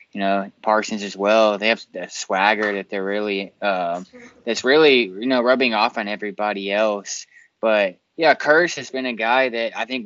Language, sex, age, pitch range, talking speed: English, male, 20-39, 100-115 Hz, 195 wpm